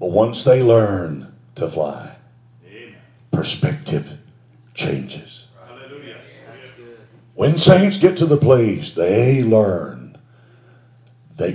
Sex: male